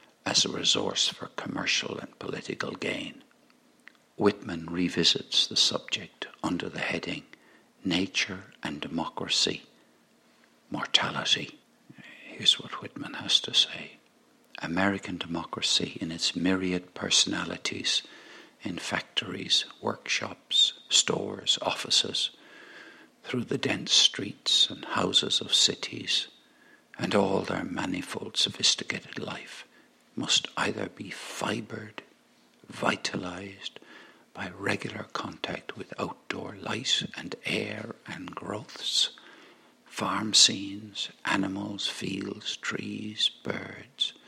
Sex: male